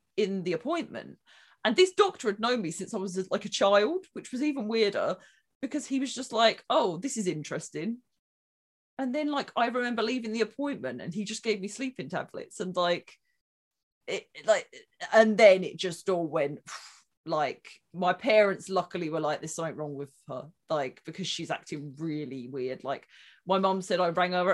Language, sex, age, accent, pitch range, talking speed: English, female, 20-39, British, 180-250 Hz, 190 wpm